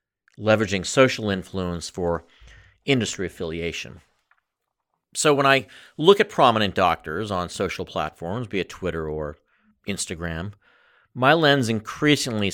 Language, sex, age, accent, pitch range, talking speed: English, male, 50-69, American, 85-110 Hz, 115 wpm